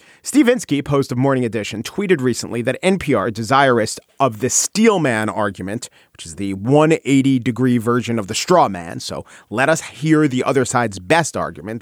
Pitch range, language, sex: 130-190 Hz, English, male